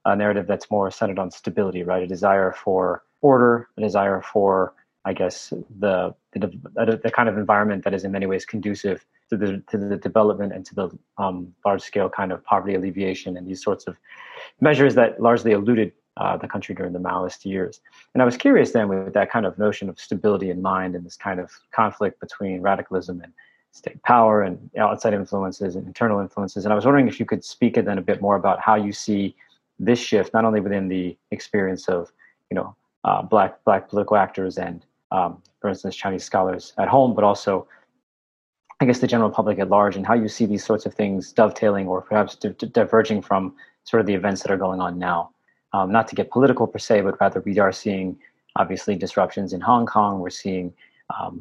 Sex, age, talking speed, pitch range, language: male, 30-49, 210 wpm, 95-105 Hz, English